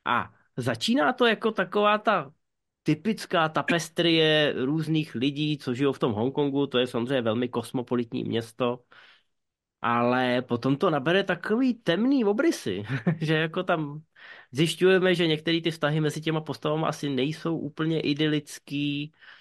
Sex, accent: male, native